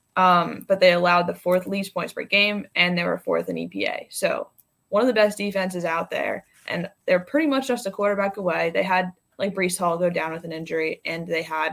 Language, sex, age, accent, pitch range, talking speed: English, female, 20-39, American, 170-200 Hz, 230 wpm